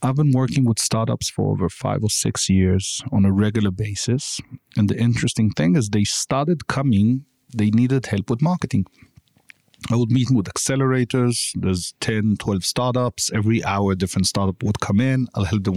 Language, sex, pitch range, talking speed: Bulgarian, male, 100-125 Hz, 185 wpm